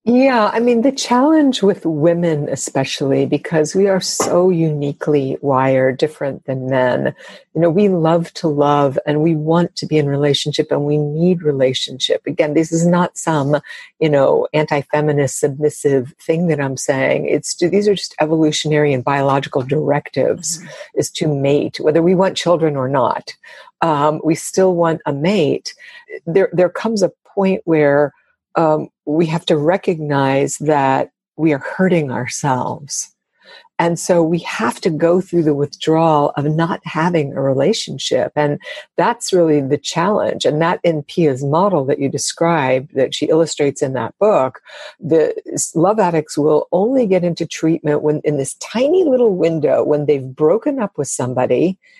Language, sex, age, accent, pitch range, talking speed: English, female, 60-79, American, 145-180 Hz, 160 wpm